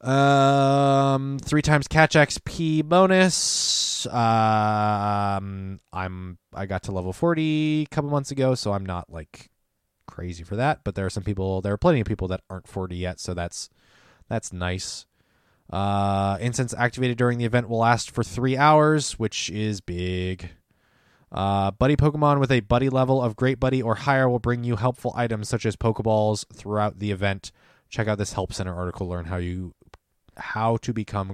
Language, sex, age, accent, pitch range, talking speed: English, male, 20-39, American, 95-130 Hz, 175 wpm